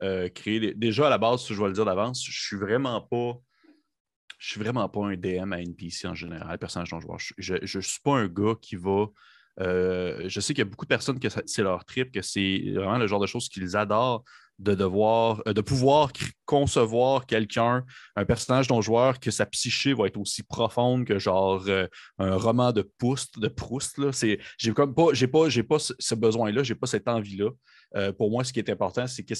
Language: French